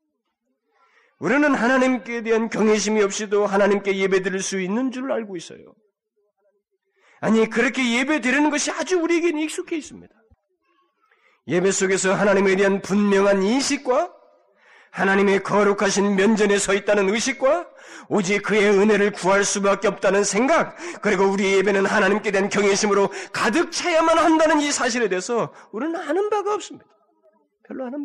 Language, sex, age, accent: Korean, male, 40-59, native